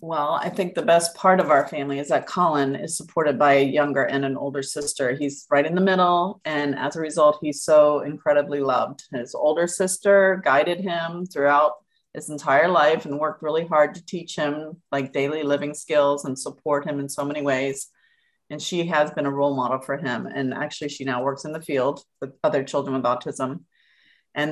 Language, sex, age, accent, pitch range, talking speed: English, female, 40-59, American, 145-175 Hz, 205 wpm